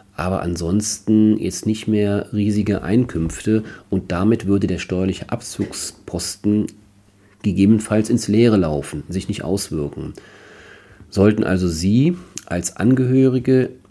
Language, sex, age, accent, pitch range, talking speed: German, male, 40-59, German, 90-115 Hz, 110 wpm